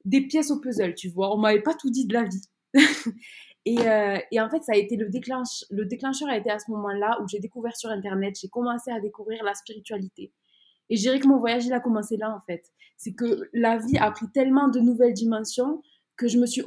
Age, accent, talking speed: 20-39, French, 250 wpm